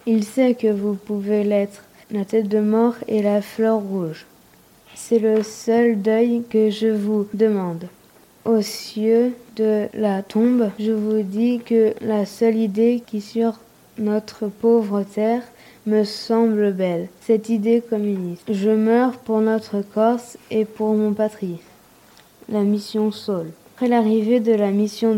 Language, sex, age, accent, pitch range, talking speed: French, female, 20-39, French, 210-230 Hz, 150 wpm